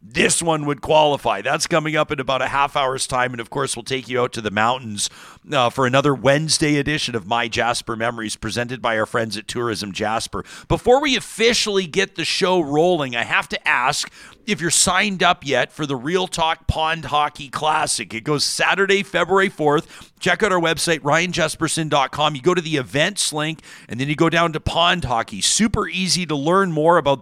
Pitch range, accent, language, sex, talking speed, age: 130-170 Hz, American, English, male, 205 wpm, 50-69